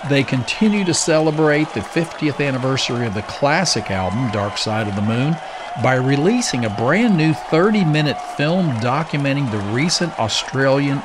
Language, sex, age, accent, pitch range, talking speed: English, male, 50-69, American, 110-145 Hz, 145 wpm